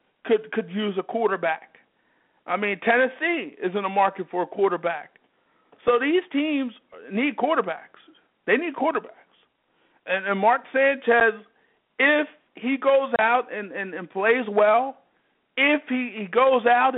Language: English